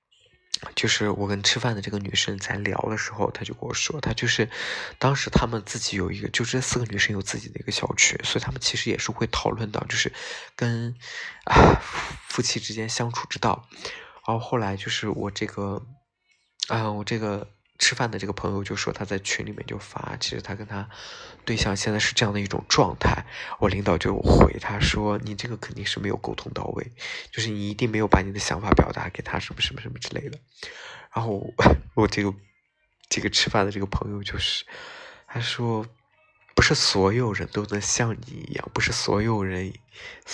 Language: Chinese